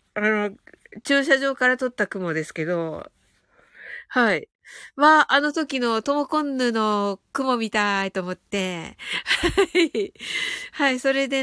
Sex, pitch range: female, 215-330 Hz